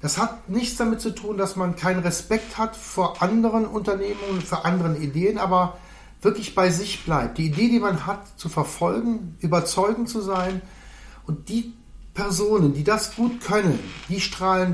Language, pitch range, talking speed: German, 160-200 Hz, 165 wpm